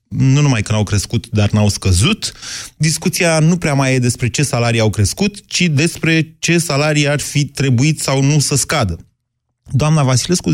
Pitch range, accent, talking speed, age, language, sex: 105-150 Hz, native, 175 wpm, 30-49, Romanian, male